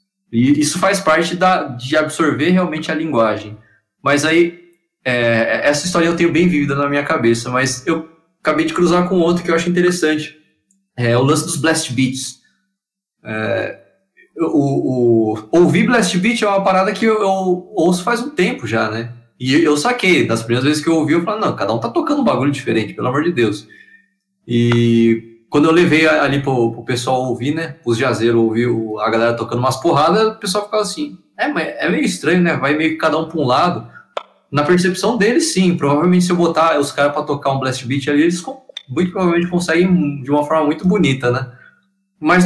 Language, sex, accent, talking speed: Portuguese, male, Brazilian, 200 wpm